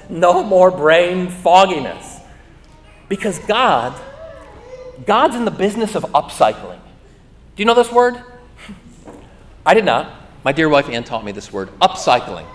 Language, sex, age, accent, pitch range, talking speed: English, male, 40-59, American, 155-200 Hz, 140 wpm